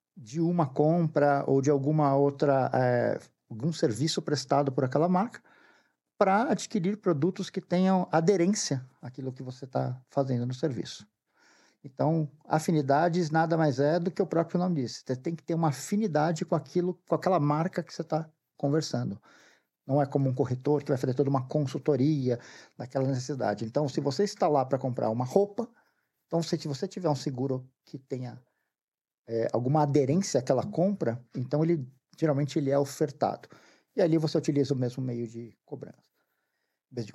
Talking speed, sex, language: 170 wpm, male, Portuguese